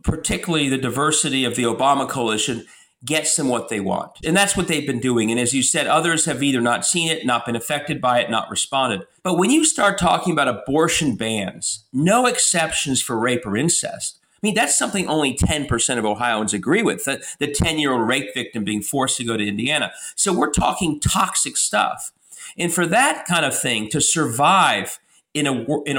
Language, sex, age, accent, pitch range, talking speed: English, male, 40-59, American, 125-170 Hz, 200 wpm